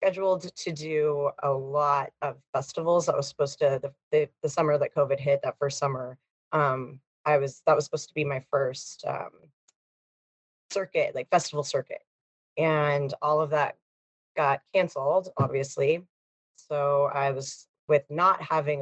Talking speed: 155 wpm